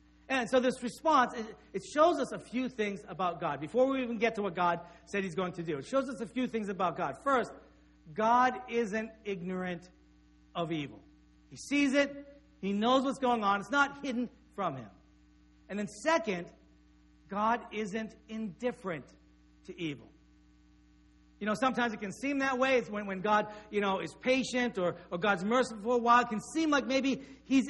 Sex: male